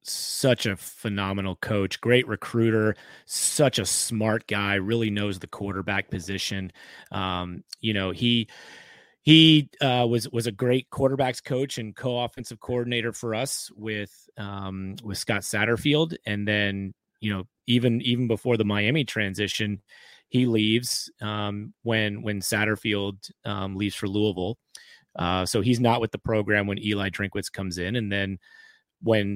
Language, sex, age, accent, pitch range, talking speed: English, male, 30-49, American, 100-120 Hz, 145 wpm